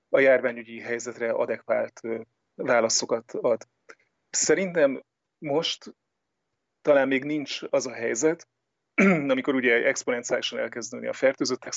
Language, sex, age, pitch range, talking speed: Hungarian, male, 30-49, 120-135 Hz, 100 wpm